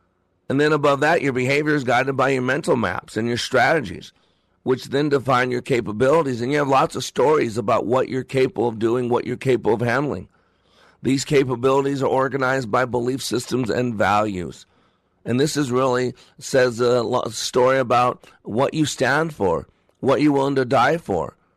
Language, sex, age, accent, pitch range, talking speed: English, male, 50-69, American, 115-140 Hz, 180 wpm